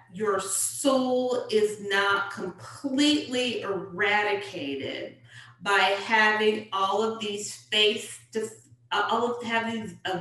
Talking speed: 100 wpm